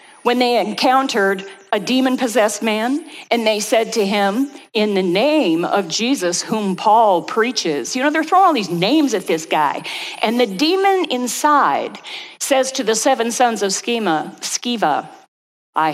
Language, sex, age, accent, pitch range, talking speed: English, female, 50-69, American, 180-250 Hz, 160 wpm